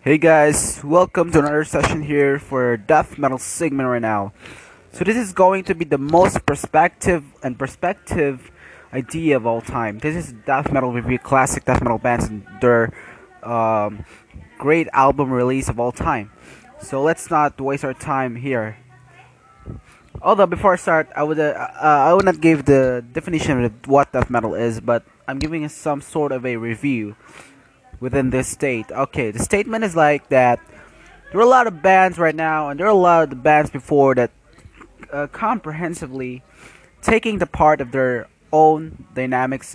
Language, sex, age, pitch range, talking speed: English, male, 20-39, 125-170 Hz, 170 wpm